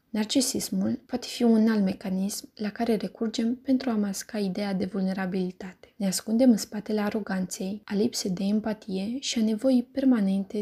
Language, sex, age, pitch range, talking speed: Romanian, female, 20-39, 195-235 Hz, 160 wpm